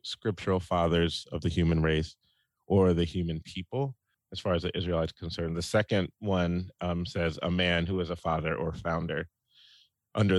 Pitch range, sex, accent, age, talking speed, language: 85-100 Hz, male, American, 30-49, 175 wpm, English